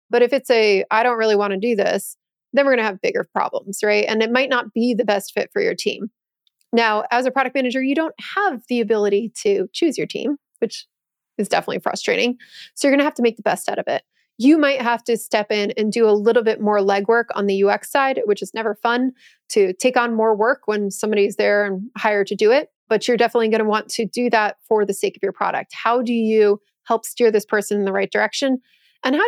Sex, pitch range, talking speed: female, 210-245 Hz, 250 wpm